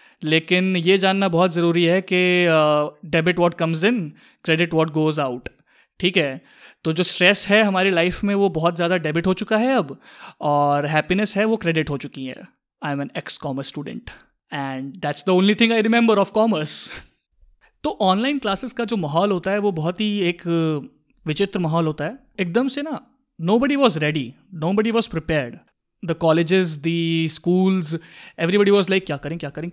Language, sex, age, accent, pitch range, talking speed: Hindi, male, 20-39, native, 160-210 Hz, 185 wpm